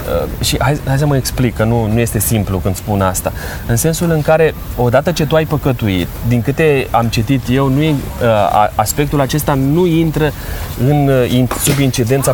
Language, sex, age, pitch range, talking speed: Romanian, male, 20-39, 110-145 Hz, 175 wpm